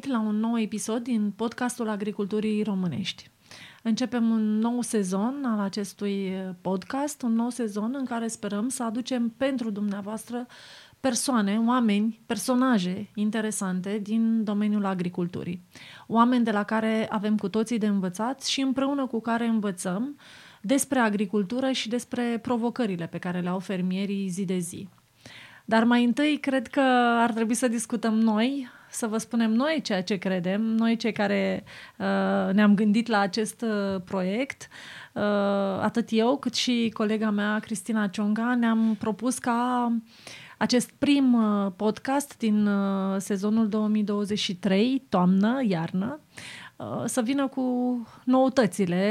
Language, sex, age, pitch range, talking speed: Romanian, female, 30-49, 200-240 Hz, 130 wpm